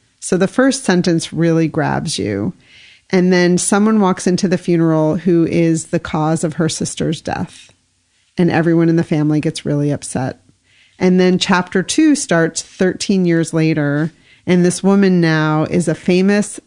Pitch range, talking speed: 155-180 Hz, 160 wpm